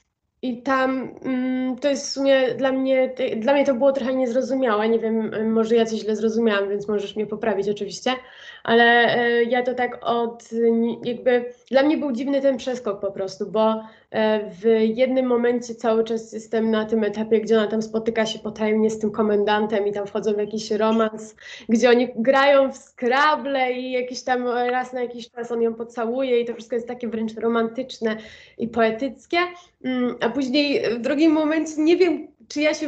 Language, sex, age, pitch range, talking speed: Polish, female, 20-39, 225-270 Hz, 180 wpm